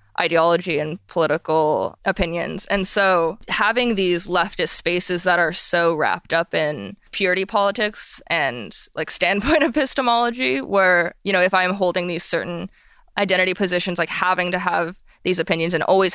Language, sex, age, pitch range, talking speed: English, female, 20-39, 170-185 Hz, 150 wpm